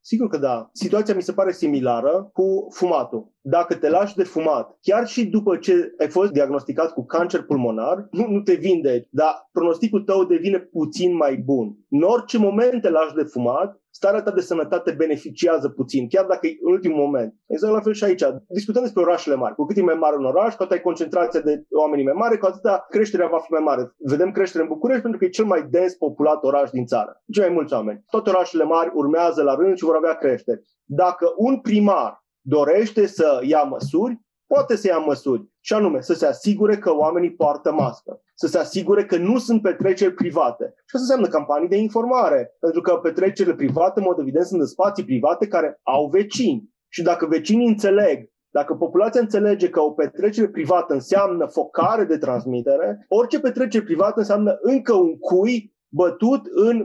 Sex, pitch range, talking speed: male, 160-210 Hz, 195 wpm